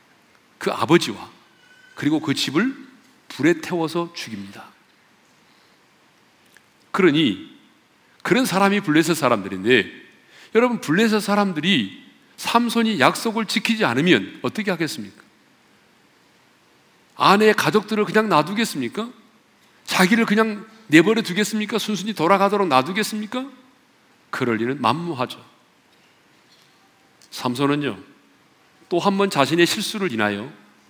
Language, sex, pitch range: Korean, male, 145-215 Hz